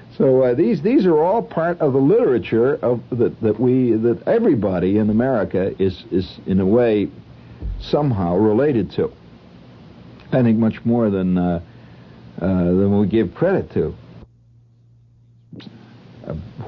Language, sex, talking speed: English, male, 140 wpm